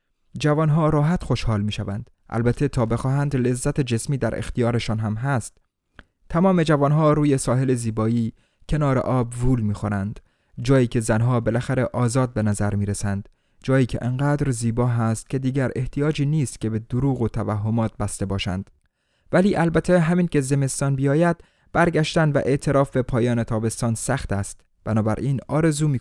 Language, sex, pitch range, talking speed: Persian, male, 110-145 Hz, 145 wpm